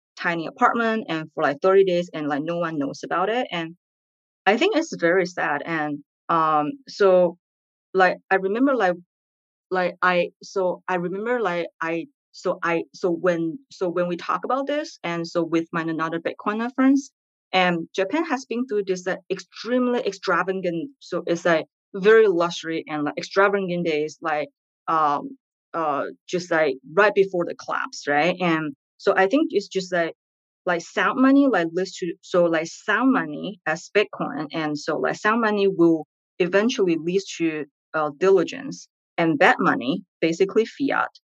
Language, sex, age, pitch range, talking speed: English, female, 20-39, 165-200 Hz, 165 wpm